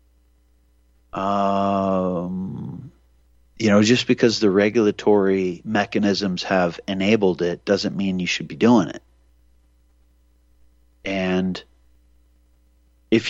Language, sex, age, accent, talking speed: English, male, 30-49, American, 90 wpm